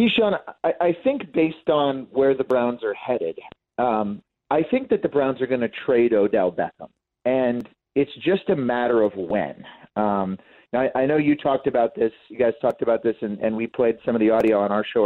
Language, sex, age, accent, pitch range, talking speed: English, male, 40-59, American, 115-150 Hz, 225 wpm